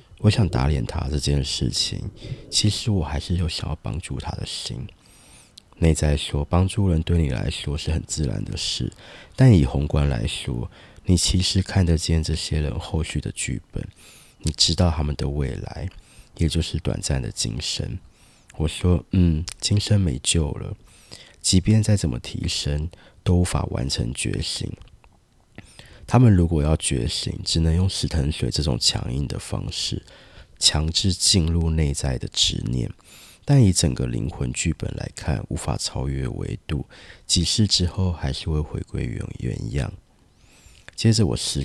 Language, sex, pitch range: Chinese, male, 75-95 Hz